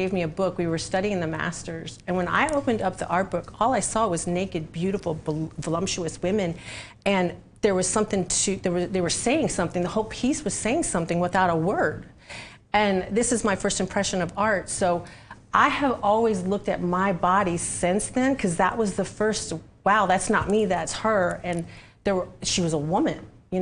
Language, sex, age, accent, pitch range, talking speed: English, female, 40-59, American, 165-200 Hz, 210 wpm